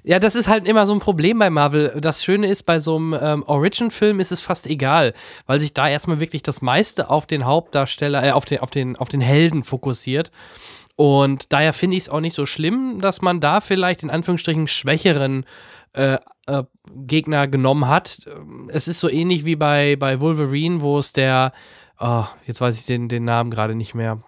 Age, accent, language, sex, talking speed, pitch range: 20-39, German, German, male, 205 wpm, 130-165 Hz